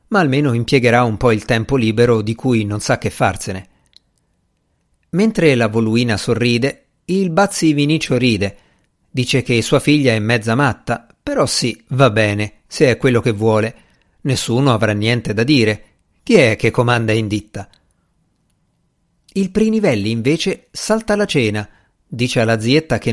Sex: male